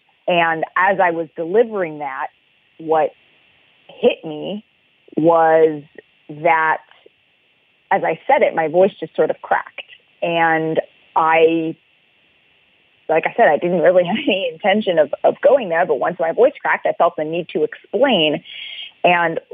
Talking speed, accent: 145 wpm, American